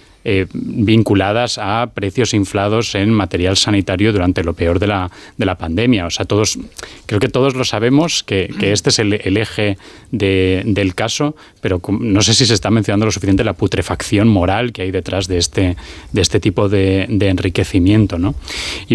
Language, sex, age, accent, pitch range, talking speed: Spanish, male, 20-39, Spanish, 95-115 Hz, 170 wpm